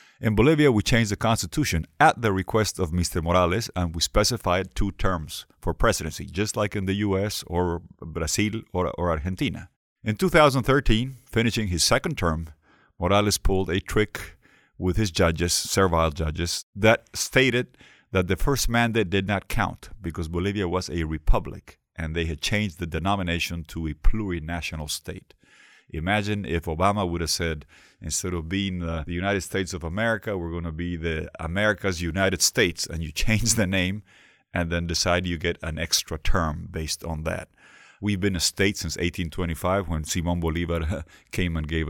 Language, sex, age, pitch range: English, male, 50-69, 85-105 Hz